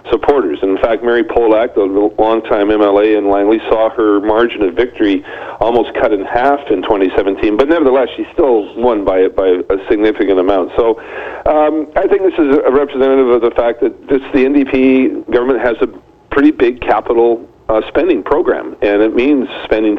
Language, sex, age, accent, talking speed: English, male, 40-59, American, 185 wpm